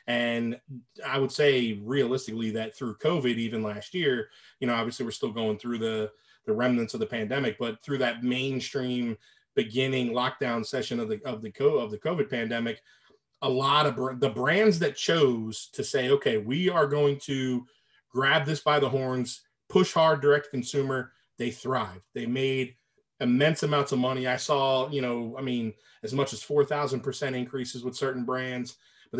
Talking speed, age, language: 180 wpm, 30-49, English